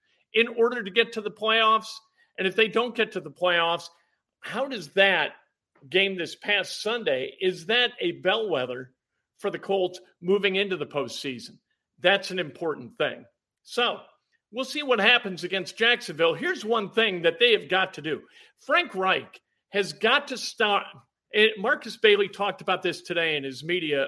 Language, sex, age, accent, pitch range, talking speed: English, male, 50-69, American, 180-235 Hz, 170 wpm